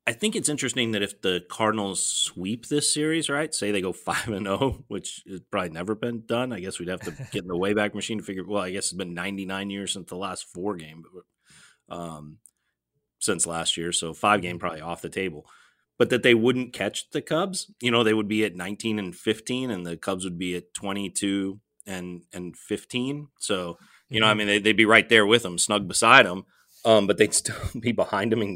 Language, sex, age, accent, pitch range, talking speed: English, male, 30-49, American, 95-120 Hz, 235 wpm